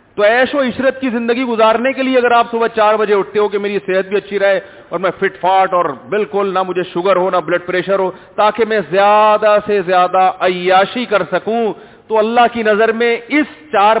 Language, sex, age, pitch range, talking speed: Urdu, male, 40-59, 180-235 Hz, 200 wpm